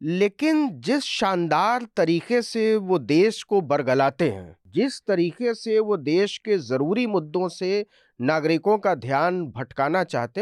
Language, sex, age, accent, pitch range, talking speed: Hindi, male, 40-59, native, 170-230 Hz, 140 wpm